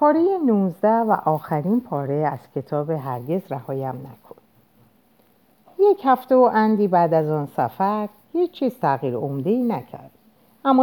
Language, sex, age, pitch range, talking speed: Persian, female, 50-69, 140-225 Hz, 125 wpm